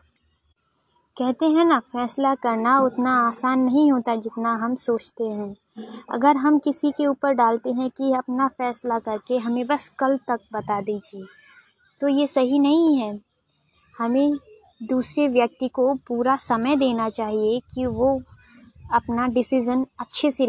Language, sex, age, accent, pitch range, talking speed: Hindi, female, 20-39, native, 235-270 Hz, 145 wpm